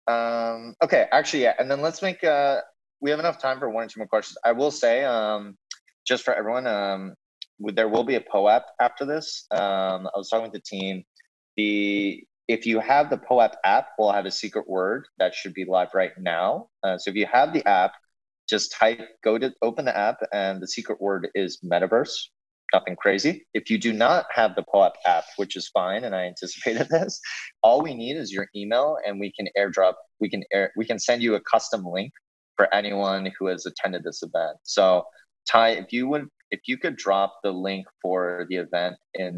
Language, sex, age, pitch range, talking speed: English, male, 20-39, 95-115 Hz, 215 wpm